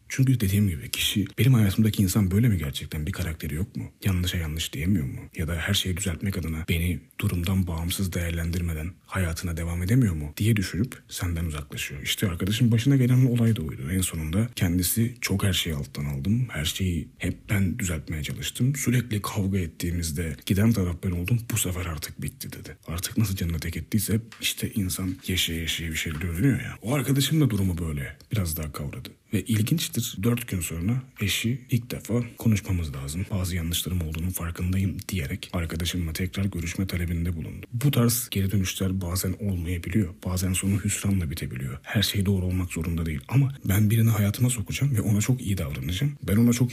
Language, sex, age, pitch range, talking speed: Turkish, male, 40-59, 85-115 Hz, 180 wpm